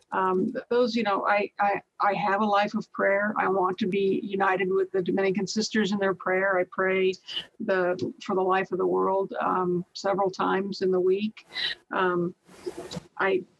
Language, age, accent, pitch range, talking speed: English, 50-69, American, 190-220 Hz, 180 wpm